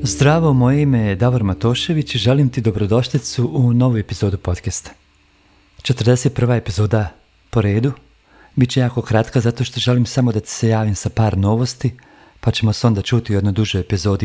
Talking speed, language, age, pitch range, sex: 170 wpm, Croatian, 40-59, 105-125 Hz, male